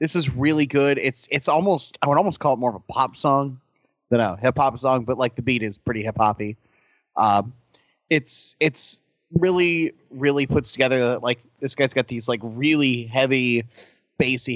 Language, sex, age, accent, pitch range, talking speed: English, male, 30-49, American, 115-145 Hz, 195 wpm